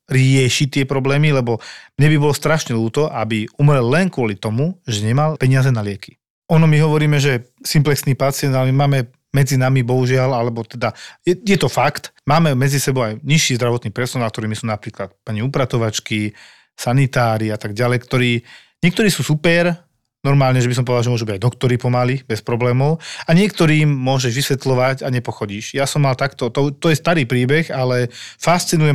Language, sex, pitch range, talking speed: Slovak, male, 115-140 Hz, 180 wpm